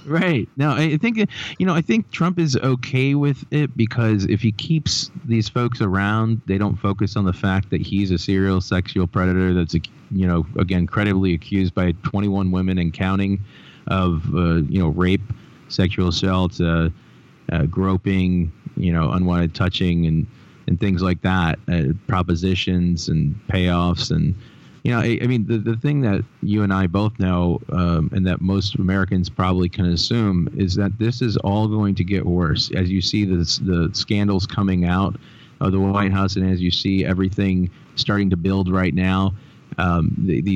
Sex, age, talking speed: male, 30-49, 180 wpm